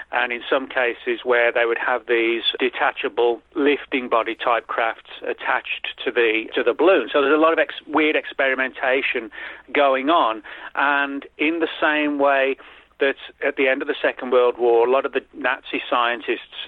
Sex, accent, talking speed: male, British, 185 wpm